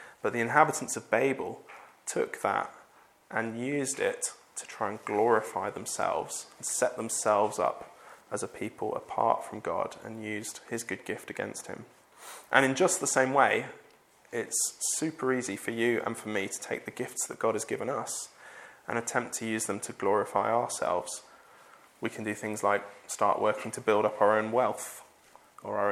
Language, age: English, 20-39